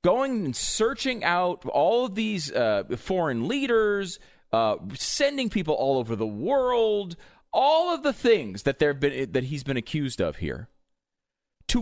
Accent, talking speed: American, 155 wpm